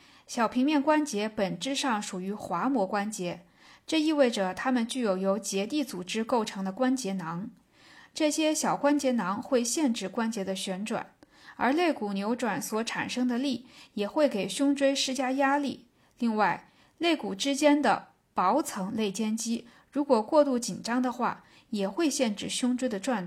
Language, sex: Chinese, female